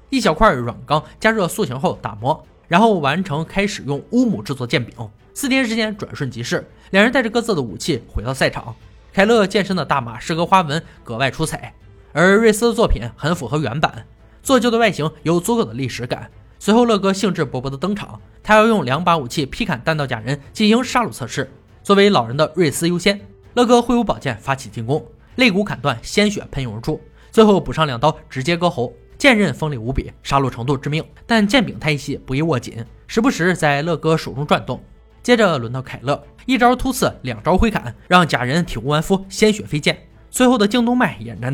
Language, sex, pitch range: Chinese, male, 130-205 Hz